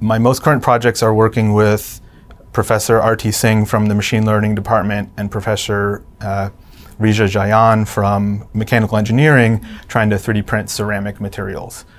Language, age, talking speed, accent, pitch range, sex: English, 30-49, 150 wpm, American, 100-115 Hz, male